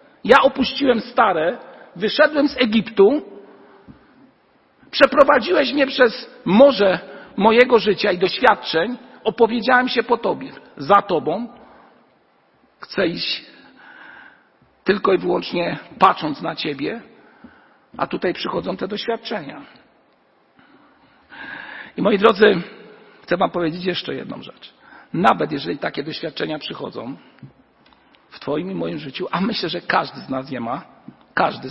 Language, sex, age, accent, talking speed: Polish, male, 50-69, native, 115 wpm